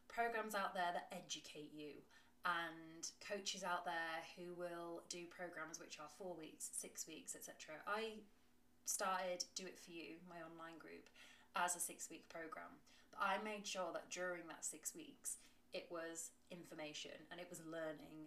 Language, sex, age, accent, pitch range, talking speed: English, female, 20-39, British, 165-200 Hz, 165 wpm